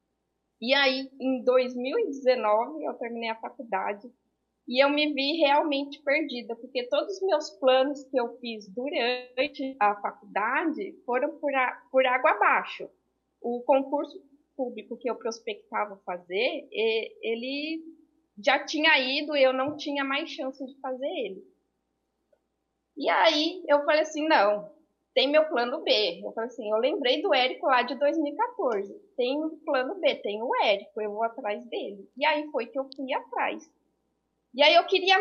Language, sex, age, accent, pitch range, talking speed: Portuguese, female, 20-39, Brazilian, 250-305 Hz, 155 wpm